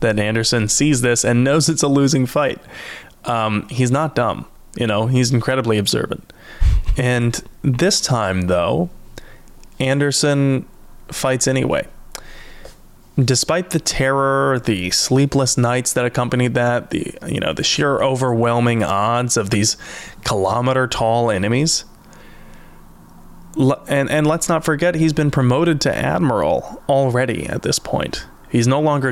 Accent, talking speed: American, 130 wpm